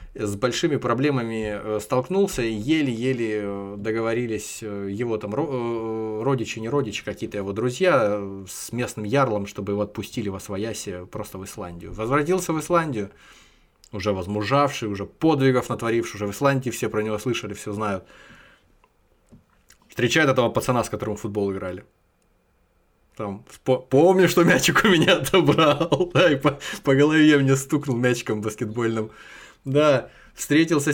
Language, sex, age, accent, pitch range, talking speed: Russian, male, 20-39, native, 110-140 Hz, 135 wpm